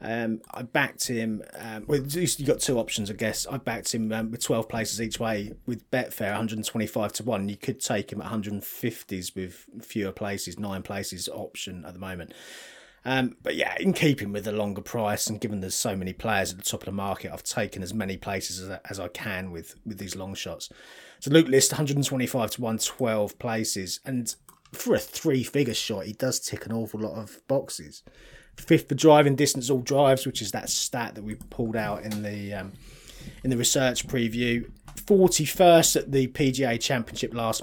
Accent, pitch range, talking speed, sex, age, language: British, 100-130 Hz, 210 wpm, male, 30-49, English